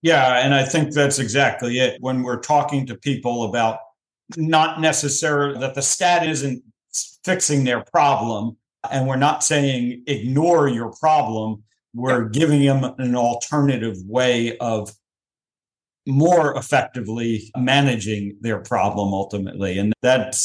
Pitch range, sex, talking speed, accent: 115-145 Hz, male, 130 wpm, American